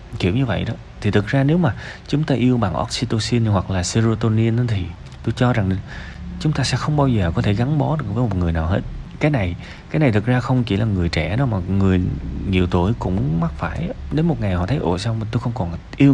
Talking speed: 250 wpm